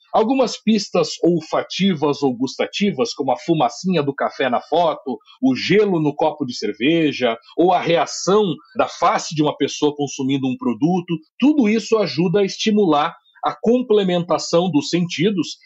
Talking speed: 145 wpm